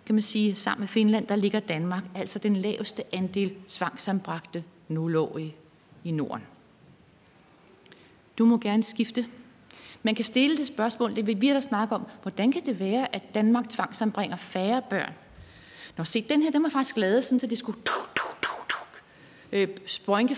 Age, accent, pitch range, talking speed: 30-49, native, 190-240 Hz, 160 wpm